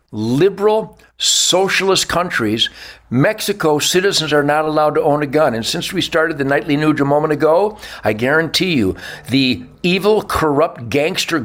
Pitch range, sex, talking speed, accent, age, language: 145-200 Hz, male, 150 wpm, American, 60-79, English